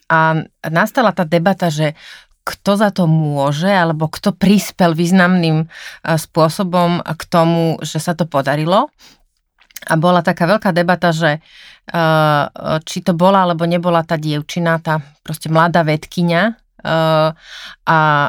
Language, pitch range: Slovak, 150-175 Hz